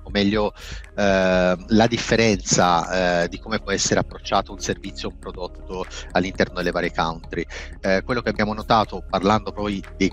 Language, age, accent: Italian, 30-49, native